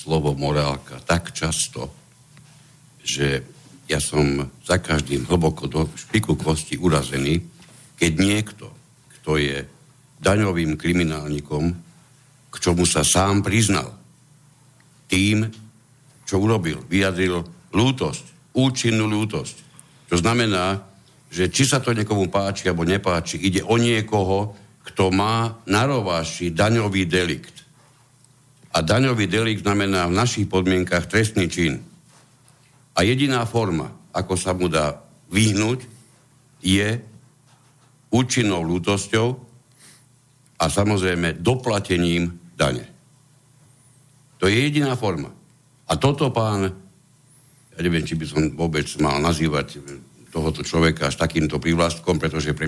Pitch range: 85-125 Hz